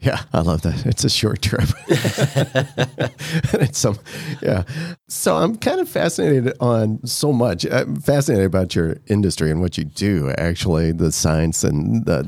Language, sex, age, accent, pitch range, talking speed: English, male, 40-59, American, 85-125 Hz, 160 wpm